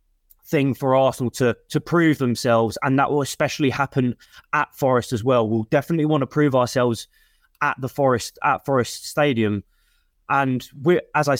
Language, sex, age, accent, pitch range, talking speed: English, male, 20-39, British, 120-145 Hz, 170 wpm